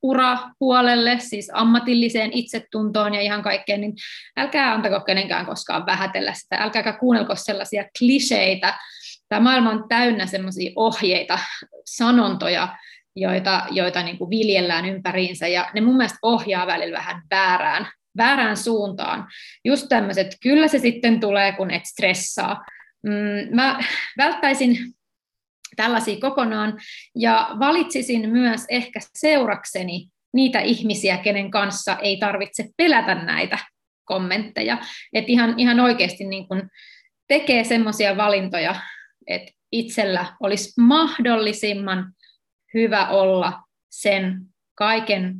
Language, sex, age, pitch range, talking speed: Finnish, female, 30-49, 195-240 Hz, 110 wpm